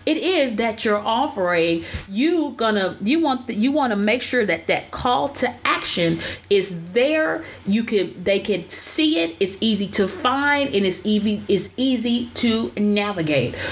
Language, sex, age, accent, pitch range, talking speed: English, female, 30-49, American, 190-255 Hz, 180 wpm